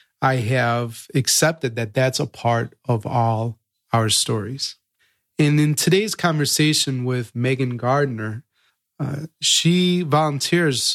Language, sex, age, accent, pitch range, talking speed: English, male, 30-49, American, 120-150 Hz, 115 wpm